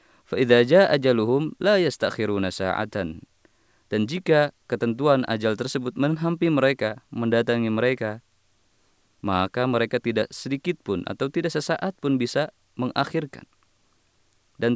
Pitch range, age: 105-140 Hz, 20-39